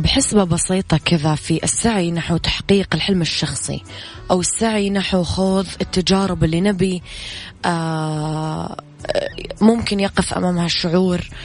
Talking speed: 105 wpm